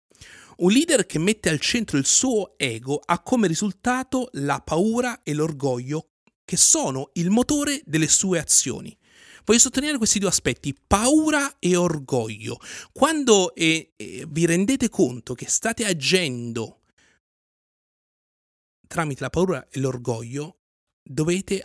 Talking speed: 125 wpm